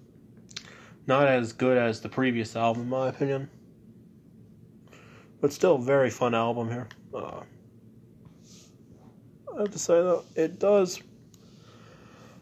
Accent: American